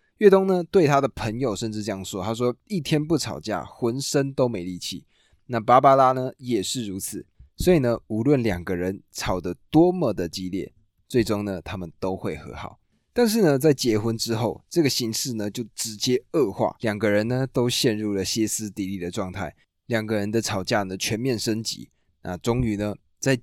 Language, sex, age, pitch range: Chinese, male, 20-39, 95-130 Hz